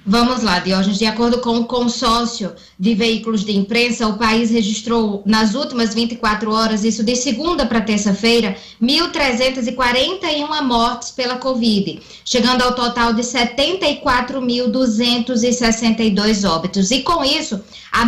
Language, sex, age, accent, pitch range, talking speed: Portuguese, female, 20-39, Brazilian, 220-250 Hz, 125 wpm